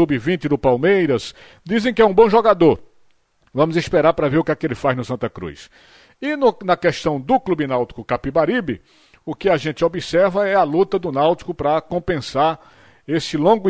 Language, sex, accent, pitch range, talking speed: Portuguese, male, Brazilian, 140-180 Hz, 195 wpm